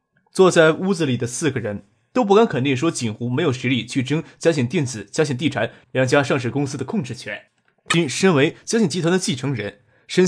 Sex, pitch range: male, 125-170 Hz